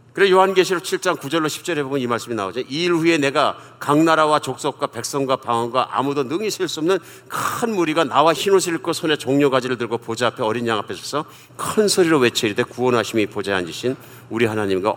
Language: Korean